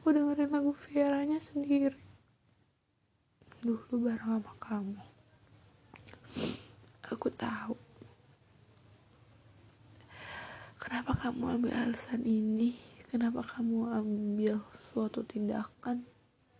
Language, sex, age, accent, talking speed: Indonesian, female, 20-39, native, 75 wpm